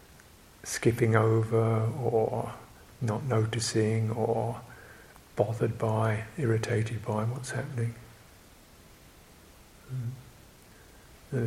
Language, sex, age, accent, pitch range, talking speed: English, male, 50-69, British, 105-120 Hz, 70 wpm